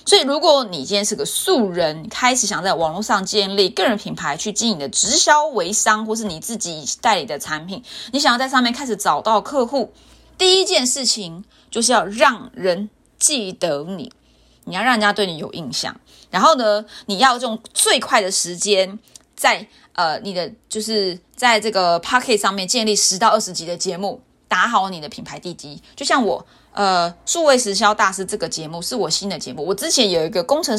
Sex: female